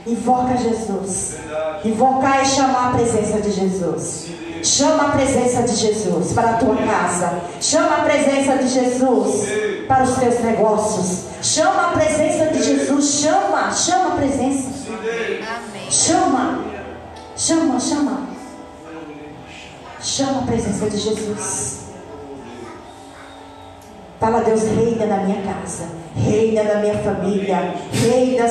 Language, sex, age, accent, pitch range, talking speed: Portuguese, female, 40-59, Brazilian, 195-255 Hz, 120 wpm